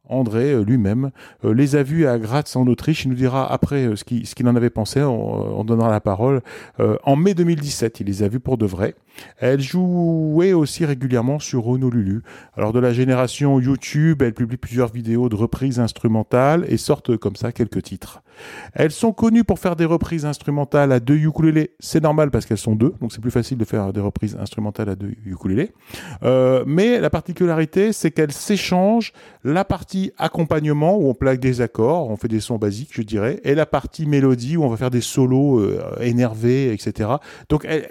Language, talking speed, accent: French, 195 wpm, French